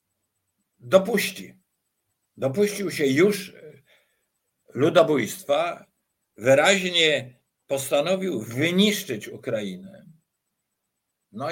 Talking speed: 50 wpm